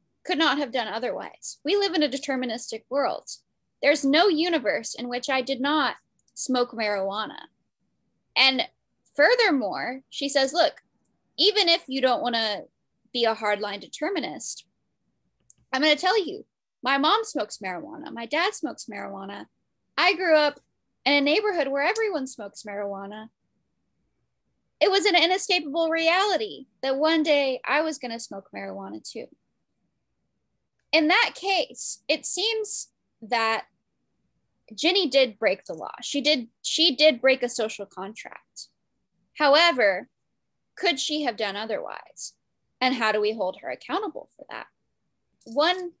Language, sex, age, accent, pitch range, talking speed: English, female, 10-29, American, 230-325 Hz, 140 wpm